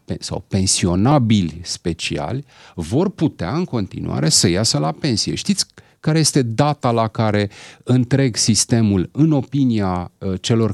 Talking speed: 125 wpm